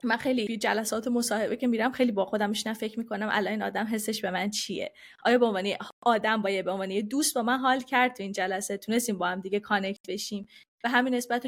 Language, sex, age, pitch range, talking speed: Persian, female, 20-39, 210-255 Hz, 220 wpm